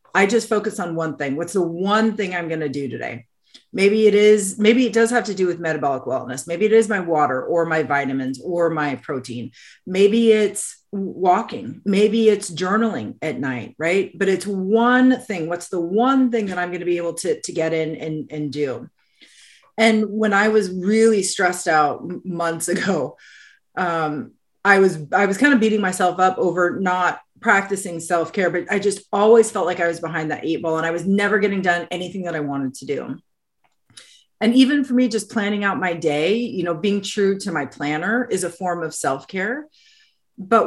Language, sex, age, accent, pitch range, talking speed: English, female, 30-49, American, 170-215 Hz, 200 wpm